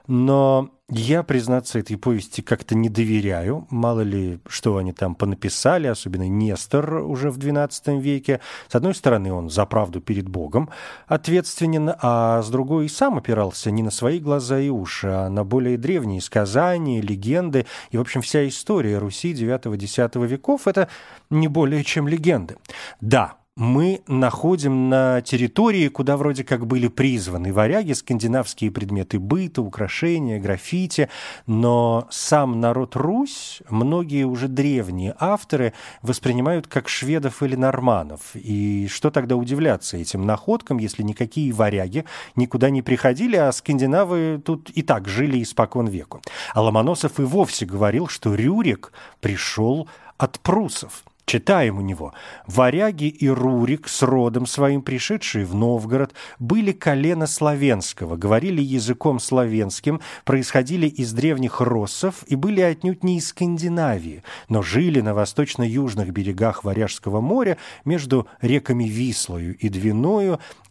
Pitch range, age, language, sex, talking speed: 110-150 Hz, 30-49, Russian, male, 135 wpm